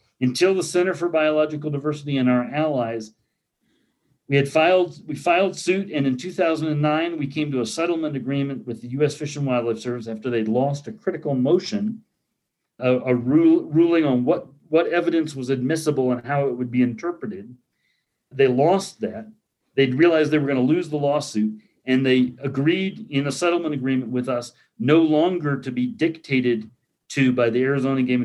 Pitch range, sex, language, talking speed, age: 125-170 Hz, male, English, 175 wpm, 40-59